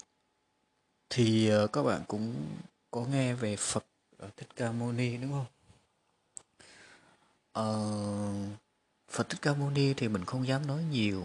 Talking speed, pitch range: 150 wpm, 100-125 Hz